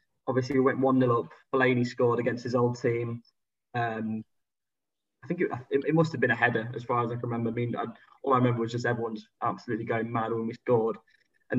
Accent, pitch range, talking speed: British, 115-130 Hz, 230 wpm